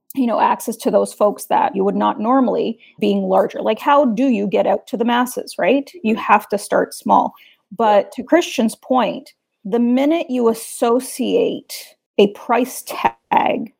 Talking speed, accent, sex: 170 wpm, American, female